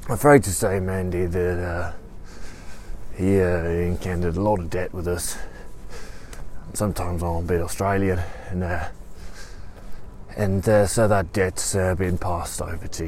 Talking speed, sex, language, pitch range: 150 wpm, male, English, 85-105 Hz